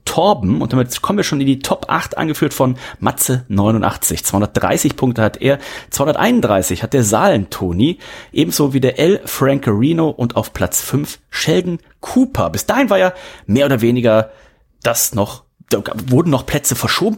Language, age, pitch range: German, 30-49, 105-150 Hz